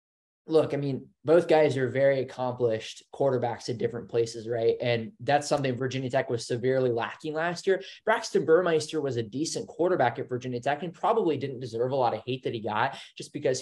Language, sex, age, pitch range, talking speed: English, male, 20-39, 120-155 Hz, 200 wpm